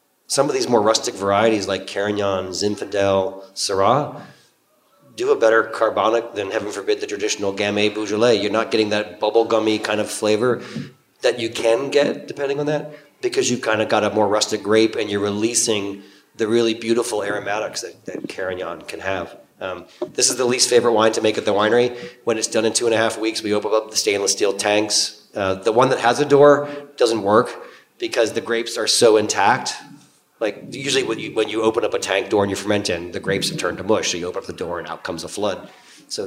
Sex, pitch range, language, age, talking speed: male, 100-115 Hz, English, 30-49, 220 wpm